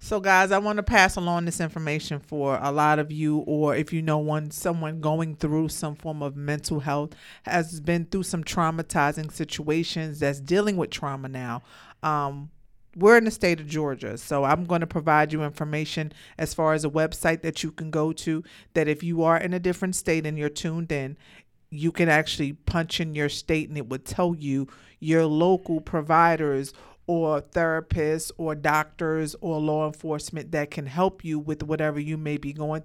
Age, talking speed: 50-69, 195 wpm